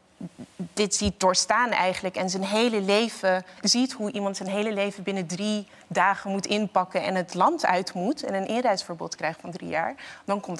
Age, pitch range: 30-49, 190-230 Hz